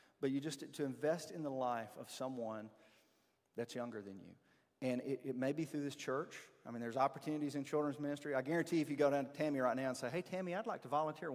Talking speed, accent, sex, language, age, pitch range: 250 wpm, American, male, English, 40-59, 120-150 Hz